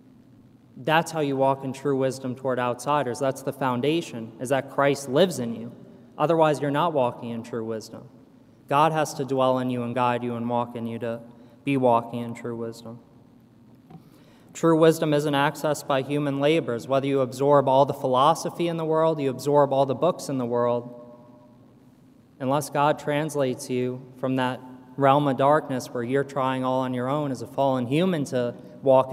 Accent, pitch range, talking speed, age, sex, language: American, 125-150 Hz, 185 wpm, 20-39, male, English